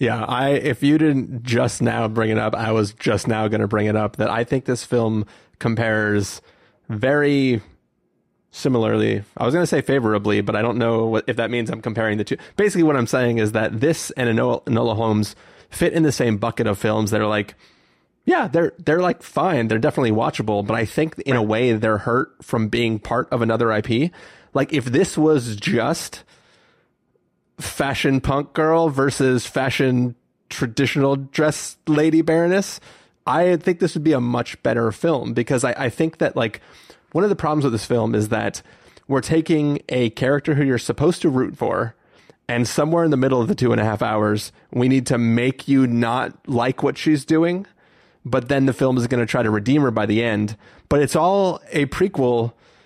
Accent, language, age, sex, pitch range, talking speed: American, English, 30-49, male, 110-145 Hz, 200 wpm